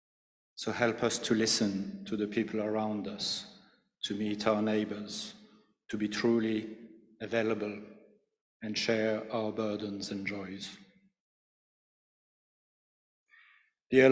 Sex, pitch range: male, 105-120 Hz